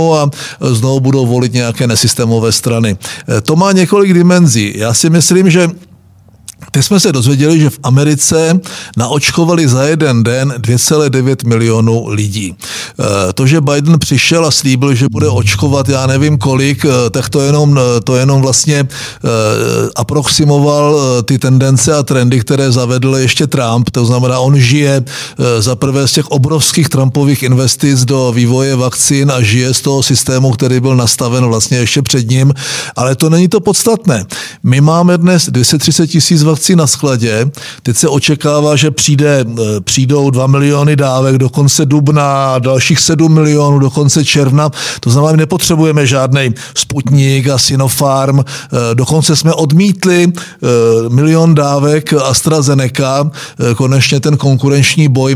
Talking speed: 140 wpm